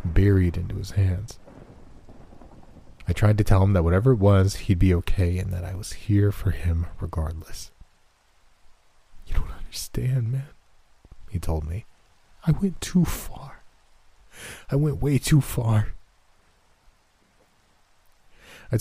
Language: English